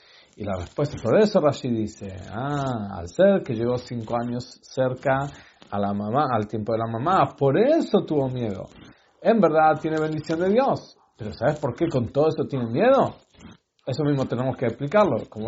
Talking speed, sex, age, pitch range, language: 185 wpm, male, 40-59, 120-165 Hz, English